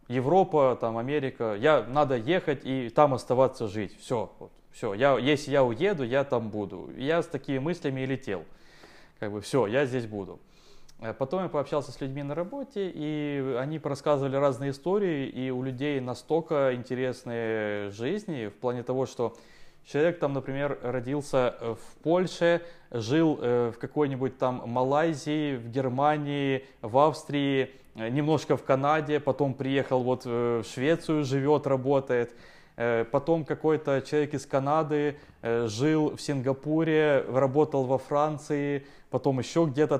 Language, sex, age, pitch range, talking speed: Ukrainian, male, 20-39, 125-150 Hz, 130 wpm